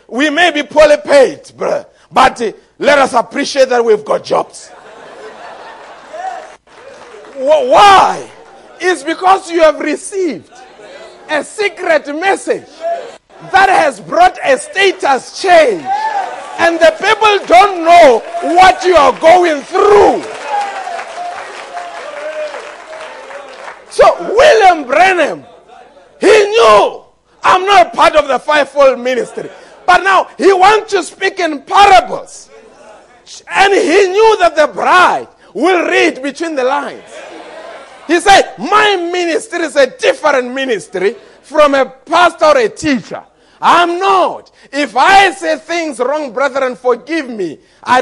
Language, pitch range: English, 300-395 Hz